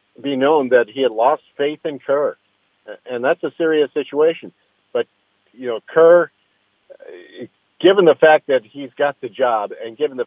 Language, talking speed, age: English, 170 wpm, 50-69